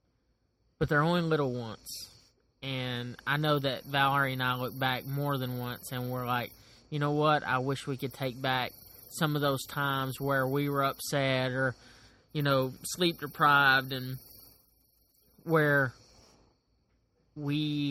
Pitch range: 125-150 Hz